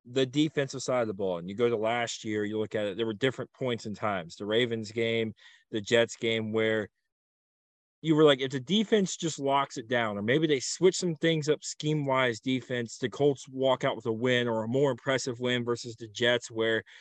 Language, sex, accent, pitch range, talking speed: English, male, American, 120-145 Hz, 225 wpm